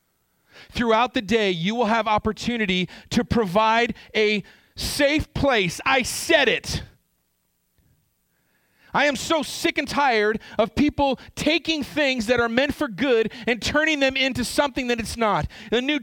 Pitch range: 200-260 Hz